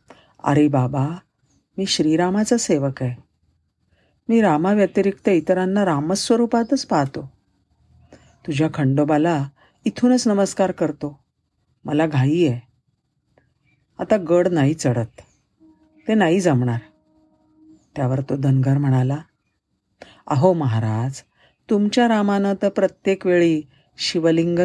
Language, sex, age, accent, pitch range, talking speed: Marathi, female, 50-69, native, 135-185 Hz, 95 wpm